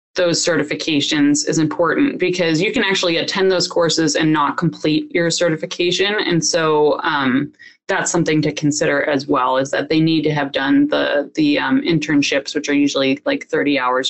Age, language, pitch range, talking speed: 20-39, English, 155-235 Hz, 180 wpm